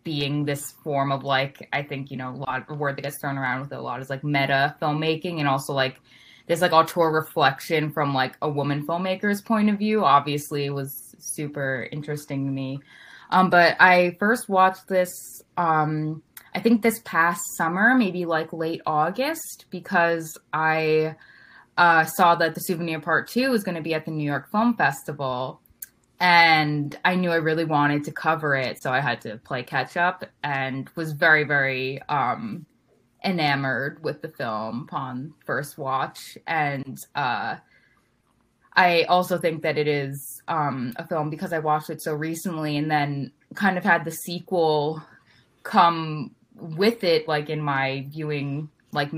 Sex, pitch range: female, 140-170 Hz